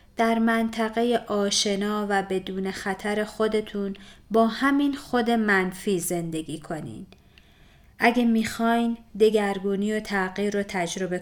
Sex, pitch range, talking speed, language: female, 185-225 Hz, 105 wpm, Persian